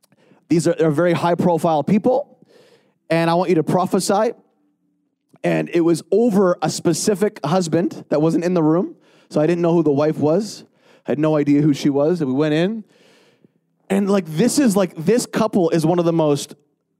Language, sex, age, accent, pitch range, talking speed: English, male, 30-49, American, 170-250 Hz, 190 wpm